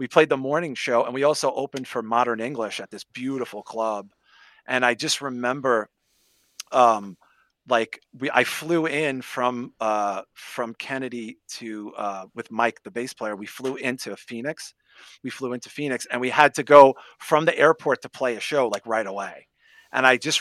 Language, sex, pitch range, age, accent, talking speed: English, male, 115-155 Hz, 40-59, American, 185 wpm